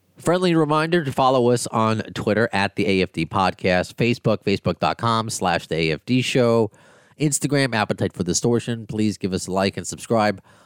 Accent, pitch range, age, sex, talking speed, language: American, 90-125 Hz, 30-49, male, 160 wpm, English